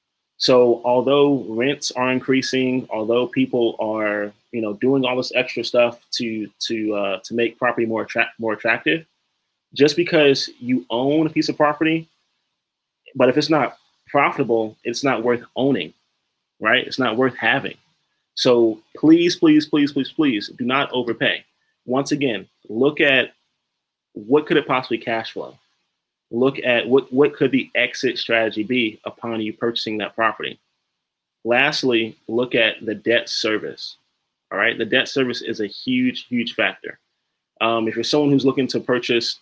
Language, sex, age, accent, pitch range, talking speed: English, male, 20-39, American, 115-140 Hz, 160 wpm